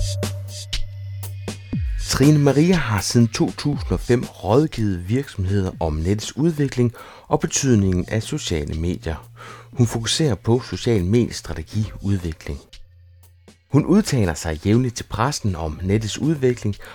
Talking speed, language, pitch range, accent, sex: 105 wpm, Danish, 95-125 Hz, native, male